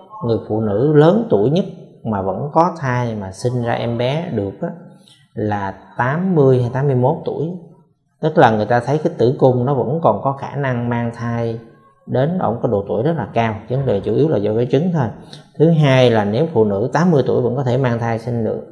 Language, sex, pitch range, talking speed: Vietnamese, male, 115-150 Hz, 210 wpm